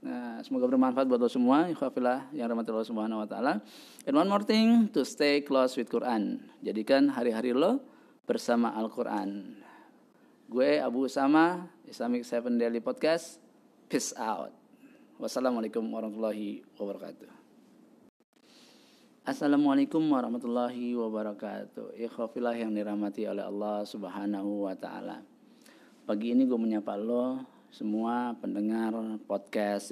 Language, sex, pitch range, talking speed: Indonesian, male, 105-170 Hz, 110 wpm